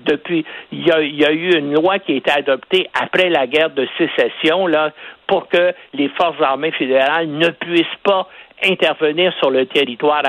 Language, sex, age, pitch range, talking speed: French, male, 60-79, 150-195 Hz, 190 wpm